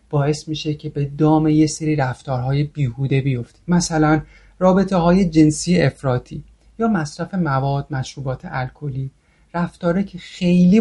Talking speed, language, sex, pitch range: 130 wpm, Persian, male, 135-175 Hz